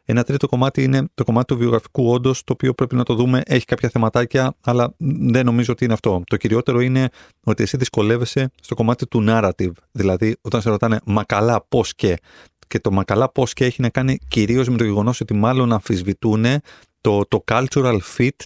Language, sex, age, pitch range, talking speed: Greek, male, 30-49, 100-130 Hz, 195 wpm